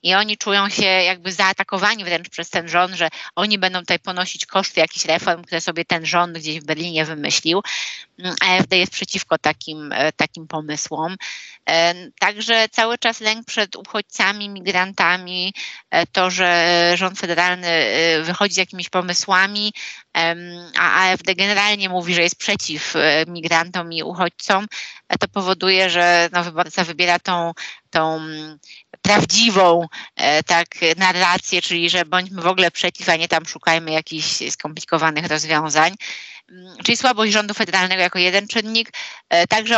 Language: Polish